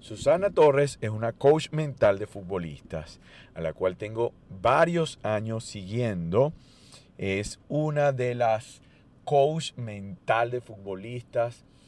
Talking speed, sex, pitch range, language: 115 wpm, male, 100-130 Hz, Spanish